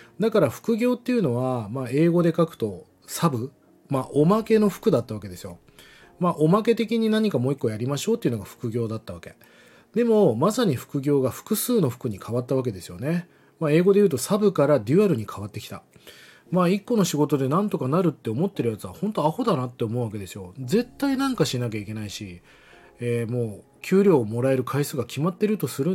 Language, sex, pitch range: Japanese, male, 120-175 Hz